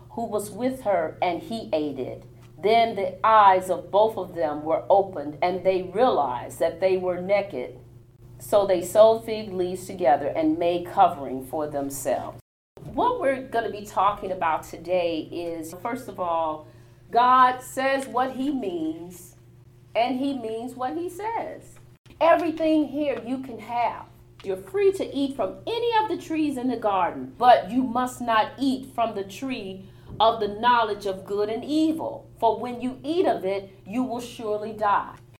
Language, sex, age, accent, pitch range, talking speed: English, female, 40-59, American, 180-255 Hz, 170 wpm